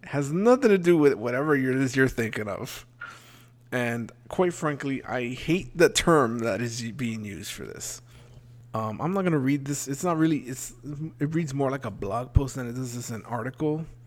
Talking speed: 200 wpm